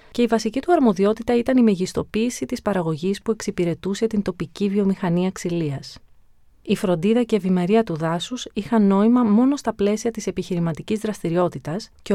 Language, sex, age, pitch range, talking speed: Greek, female, 30-49, 170-225 Hz, 155 wpm